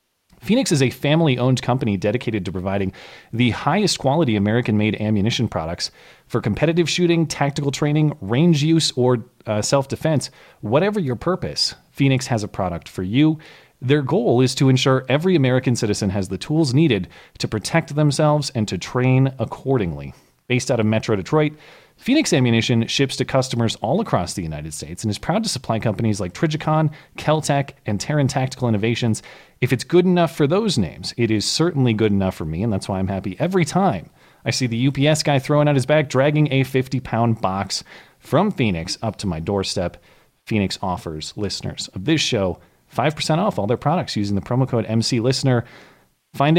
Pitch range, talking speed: 105-150 Hz, 175 wpm